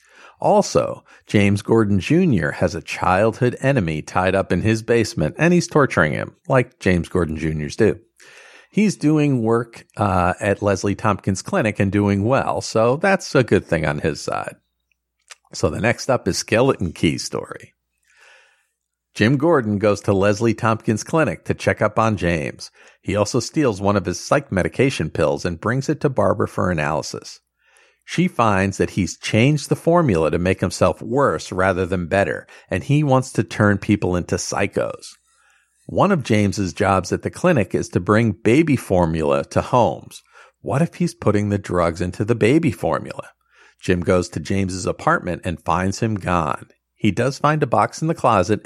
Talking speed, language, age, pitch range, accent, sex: 175 wpm, English, 50-69, 95-120 Hz, American, male